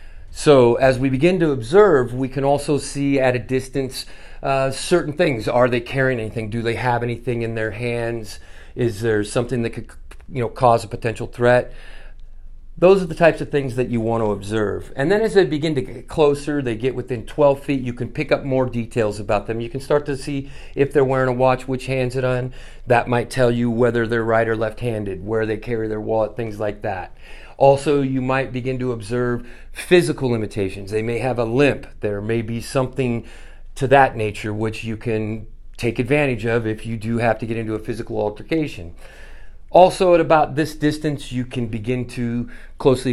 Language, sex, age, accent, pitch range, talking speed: English, male, 40-59, American, 110-135 Hz, 205 wpm